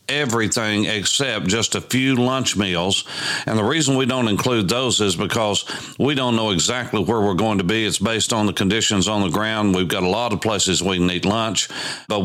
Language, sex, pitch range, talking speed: English, male, 95-110 Hz, 210 wpm